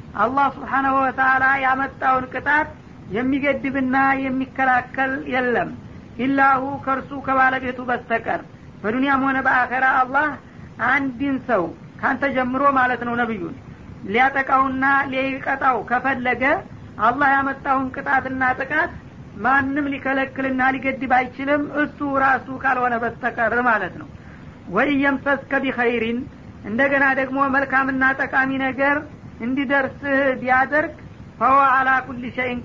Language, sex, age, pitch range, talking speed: Amharic, female, 50-69, 255-275 Hz, 95 wpm